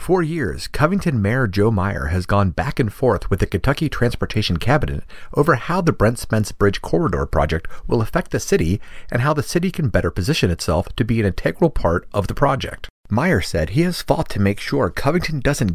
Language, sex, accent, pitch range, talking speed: English, male, American, 95-150 Hz, 205 wpm